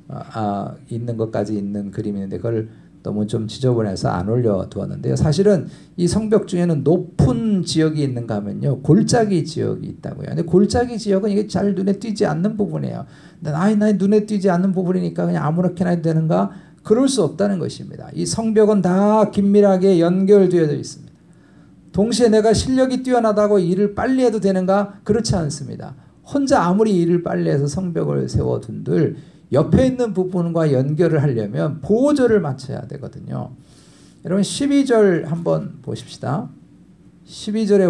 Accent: native